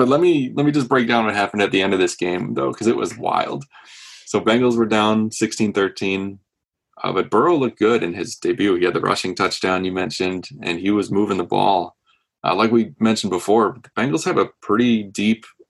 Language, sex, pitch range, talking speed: English, male, 95-120 Hz, 215 wpm